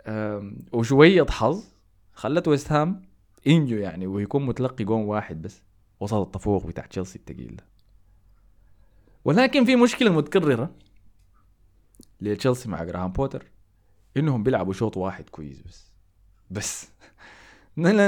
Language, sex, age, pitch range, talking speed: Arabic, male, 20-39, 95-140 Hz, 105 wpm